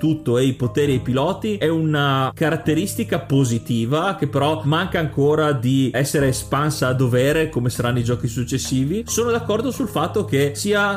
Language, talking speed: Italian, 170 wpm